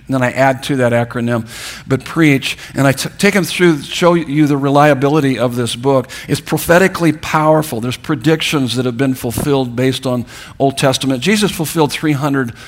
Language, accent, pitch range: English, American, 125-160 Hz